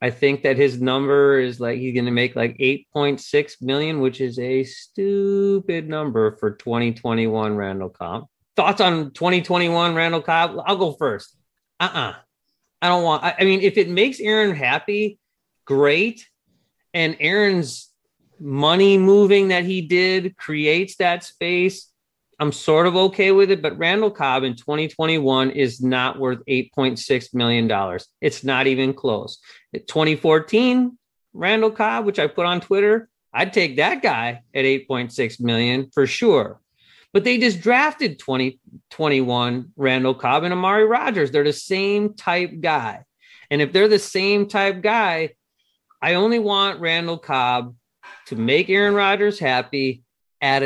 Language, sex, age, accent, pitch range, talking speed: English, male, 30-49, American, 130-195 Hz, 150 wpm